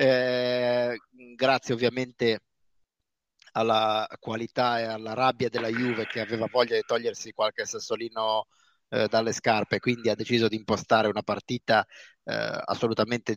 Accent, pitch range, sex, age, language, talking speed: native, 115-135 Hz, male, 30-49, Italian, 130 wpm